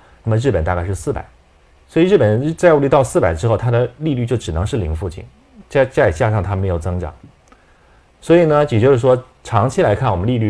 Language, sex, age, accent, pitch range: Chinese, male, 30-49, native, 90-120 Hz